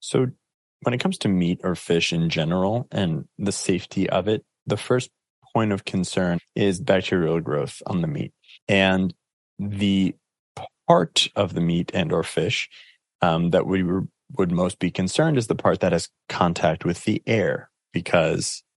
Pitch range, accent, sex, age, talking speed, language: 90-110 Hz, American, male, 30-49, 165 wpm, English